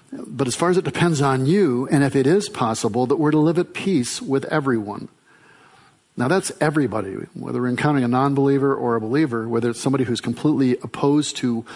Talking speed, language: 200 wpm, English